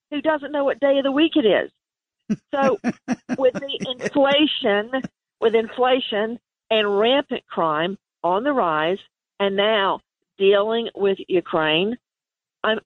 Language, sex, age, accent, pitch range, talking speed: English, female, 50-69, American, 210-280 Hz, 130 wpm